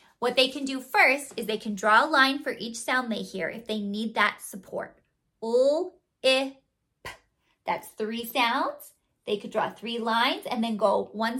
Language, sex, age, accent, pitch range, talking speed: English, female, 30-49, American, 220-285 Hz, 180 wpm